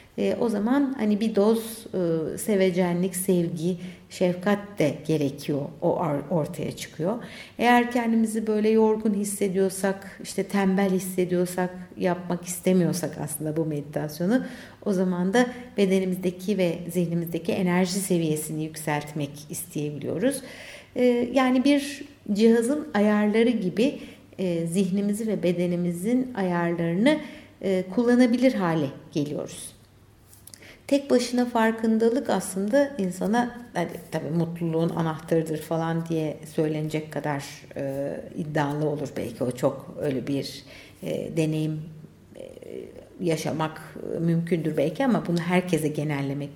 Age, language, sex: 60-79, Turkish, female